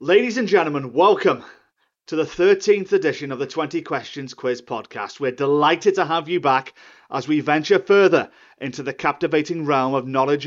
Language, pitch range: English, 135-205 Hz